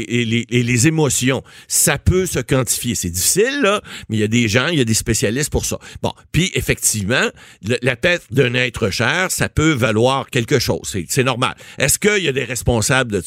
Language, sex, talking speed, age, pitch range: French, male, 220 wpm, 50-69, 120-155 Hz